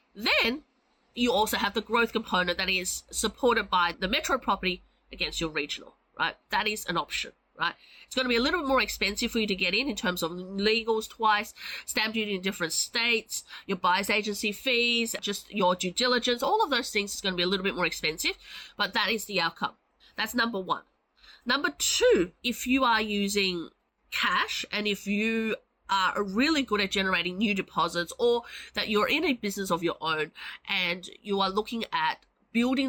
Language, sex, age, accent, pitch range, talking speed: English, female, 30-49, Australian, 175-230 Hz, 195 wpm